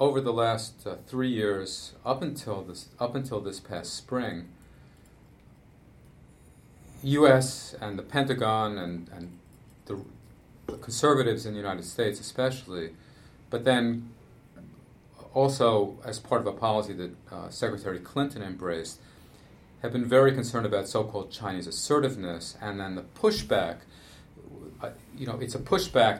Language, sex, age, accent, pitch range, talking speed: English, male, 40-59, American, 95-120 Hz, 135 wpm